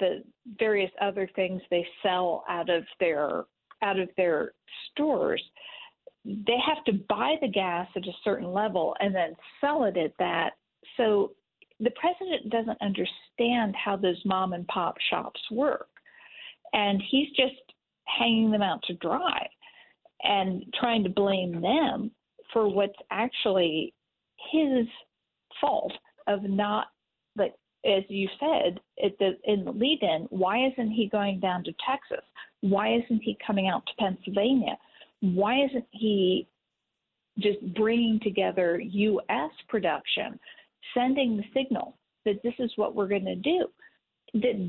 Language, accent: English, American